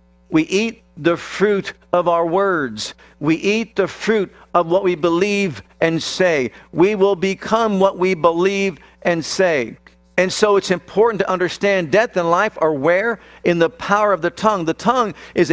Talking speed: 175 wpm